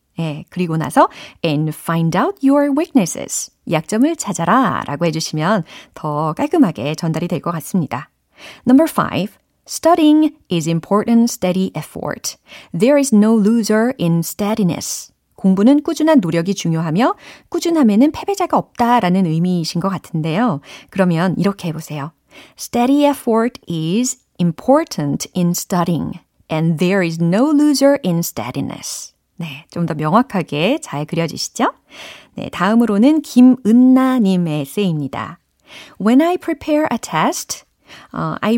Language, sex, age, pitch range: Korean, female, 40-59, 165-265 Hz